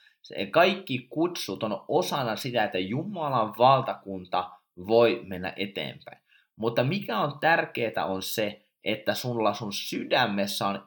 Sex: male